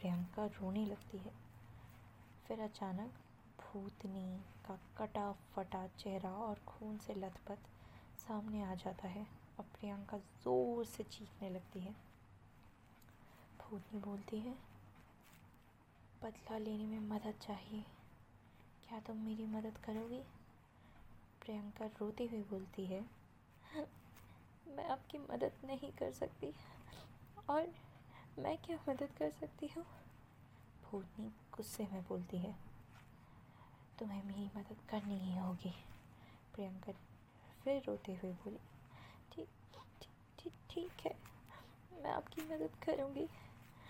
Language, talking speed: Hindi, 110 wpm